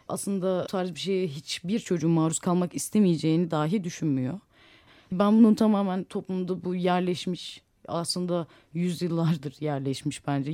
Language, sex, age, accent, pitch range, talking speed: Turkish, female, 30-49, native, 155-195 Hz, 120 wpm